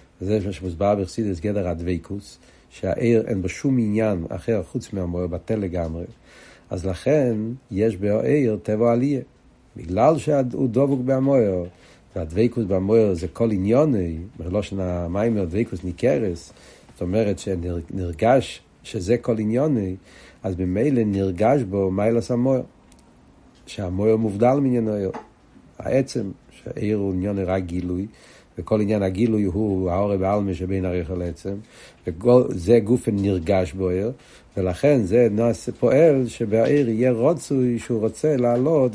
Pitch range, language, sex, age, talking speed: 95-120 Hz, Hebrew, male, 60-79, 125 wpm